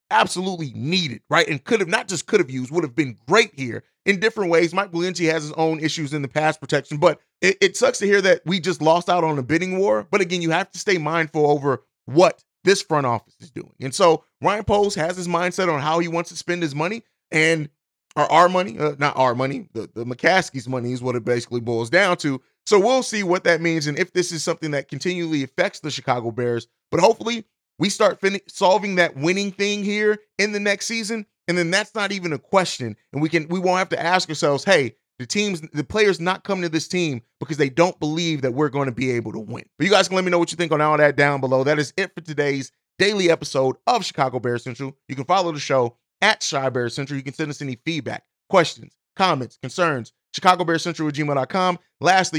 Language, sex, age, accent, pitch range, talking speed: English, male, 30-49, American, 140-185 Hz, 240 wpm